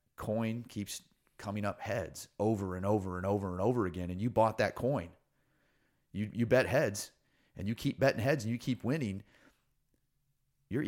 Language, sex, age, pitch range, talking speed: English, male, 30-49, 100-140 Hz, 175 wpm